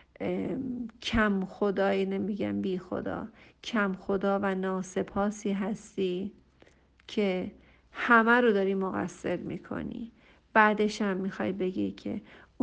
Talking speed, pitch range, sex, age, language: 100 wpm, 180-210 Hz, female, 50-69, Persian